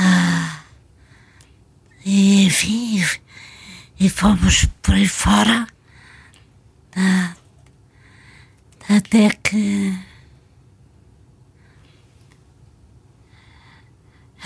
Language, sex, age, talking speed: Portuguese, female, 40-59, 45 wpm